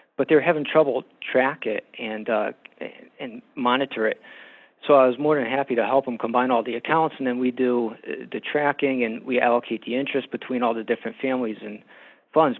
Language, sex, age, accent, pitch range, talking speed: English, male, 40-59, American, 115-130 Hz, 205 wpm